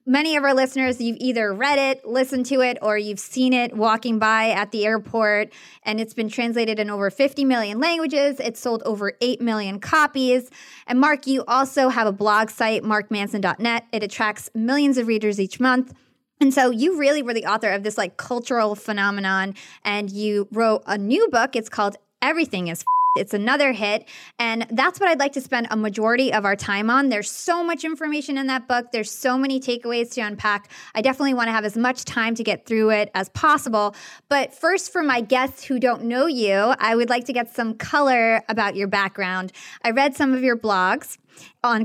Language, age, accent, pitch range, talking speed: English, 20-39, American, 215-265 Hz, 205 wpm